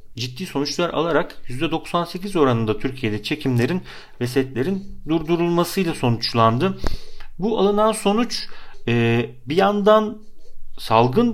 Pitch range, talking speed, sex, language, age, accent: 120-185 Hz, 95 wpm, male, Turkish, 40-59, native